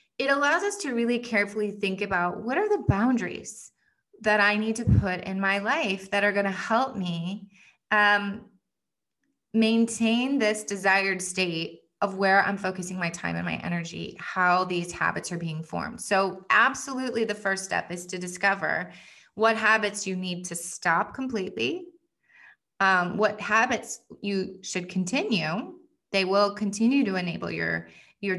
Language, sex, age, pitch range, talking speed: English, female, 20-39, 180-215 Hz, 155 wpm